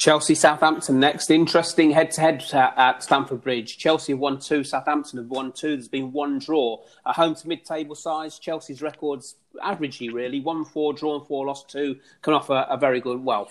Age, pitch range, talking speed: 30-49, 130-160 Hz, 185 wpm